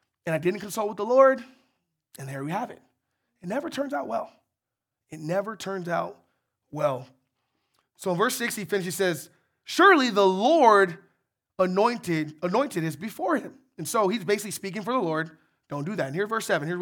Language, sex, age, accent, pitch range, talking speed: English, male, 20-39, American, 170-260 Hz, 195 wpm